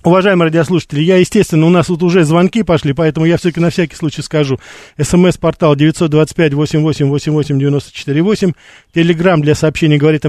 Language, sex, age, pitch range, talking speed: Russian, male, 40-59, 150-190 Hz, 140 wpm